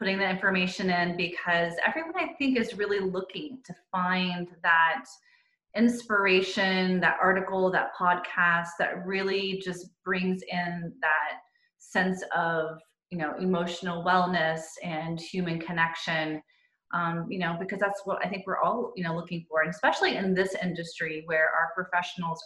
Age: 30-49